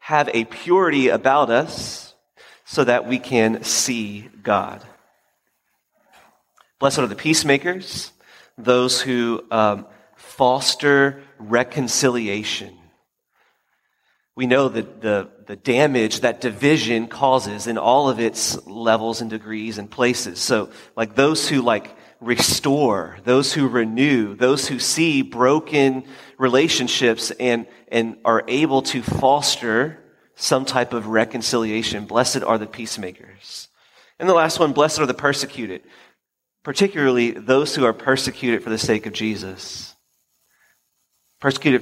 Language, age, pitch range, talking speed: English, 30-49, 115-135 Hz, 120 wpm